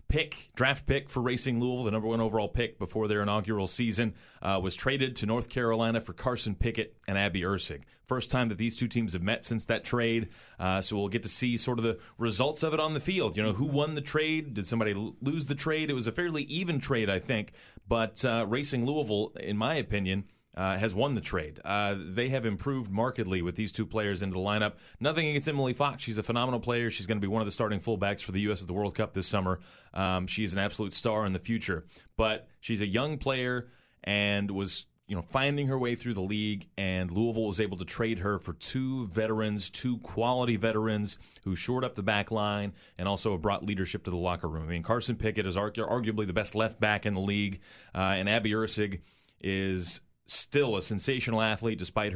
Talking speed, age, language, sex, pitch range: 225 wpm, 30-49, English, male, 100-120 Hz